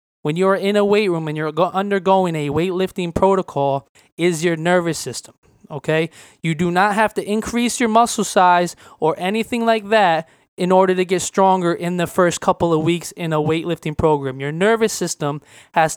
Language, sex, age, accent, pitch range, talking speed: English, male, 20-39, American, 155-190 Hz, 185 wpm